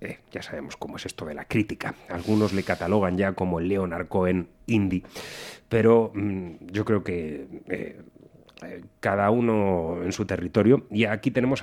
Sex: male